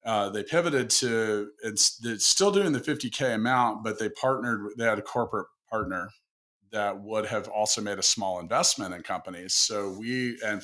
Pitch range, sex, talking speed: 95-110 Hz, male, 180 wpm